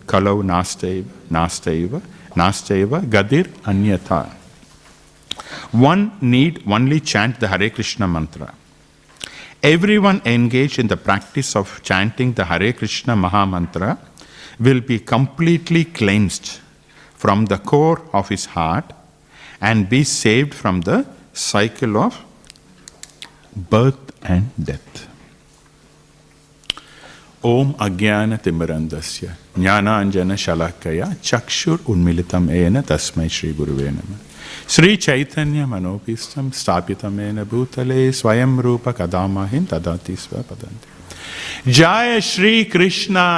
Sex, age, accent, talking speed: male, 50-69, Indian, 100 wpm